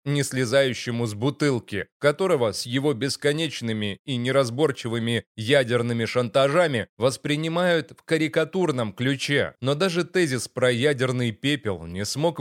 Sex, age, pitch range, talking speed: male, 30-49, 115-150 Hz, 115 wpm